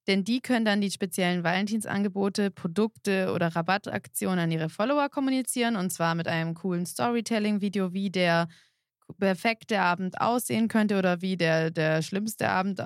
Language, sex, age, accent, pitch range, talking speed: German, female, 20-39, German, 180-210 Hz, 150 wpm